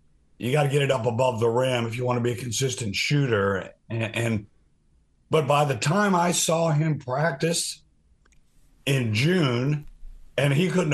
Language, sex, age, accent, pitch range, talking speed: English, male, 50-69, American, 110-145 Hz, 175 wpm